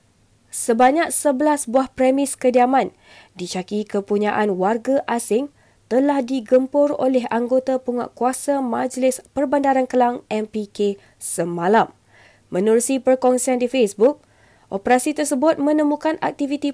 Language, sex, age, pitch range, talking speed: Malay, female, 20-39, 220-275 Hz, 95 wpm